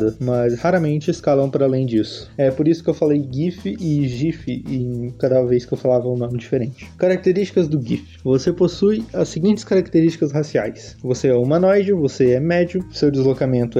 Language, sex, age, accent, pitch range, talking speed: Portuguese, male, 20-39, Brazilian, 130-170 Hz, 180 wpm